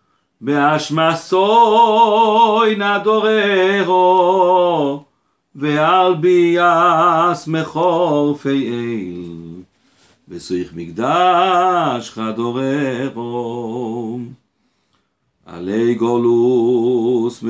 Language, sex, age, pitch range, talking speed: Russian, male, 50-69, 115-165 Hz, 40 wpm